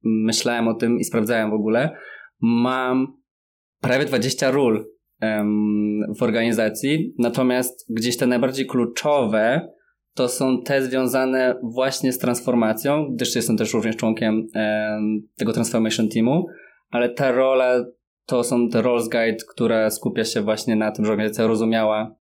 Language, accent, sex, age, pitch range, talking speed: Polish, native, male, 20-39, 110-125 Hz, 140 wpm